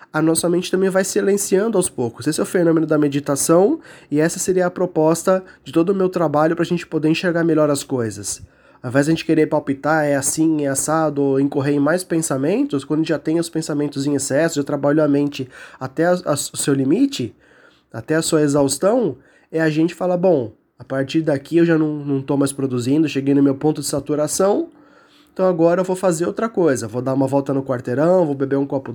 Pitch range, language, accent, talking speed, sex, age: 145-180 Hz, Portuguese, Brazilian, 225 wpm, male, 20-39